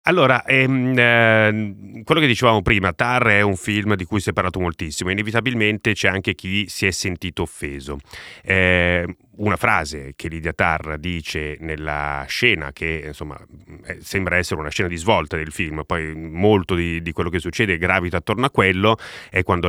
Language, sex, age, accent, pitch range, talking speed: Italian, male, 30-49, native, 80-100 Hz, 170 wpm